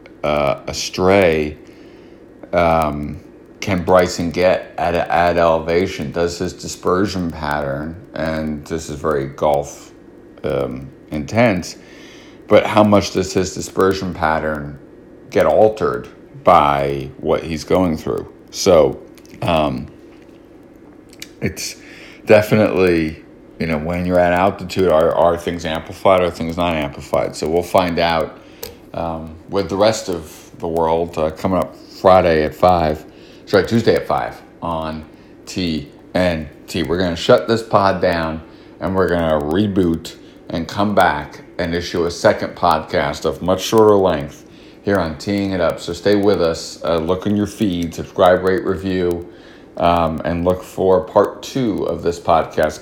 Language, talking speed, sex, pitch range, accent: English, 140 wpm, male, 80-95 Hz, American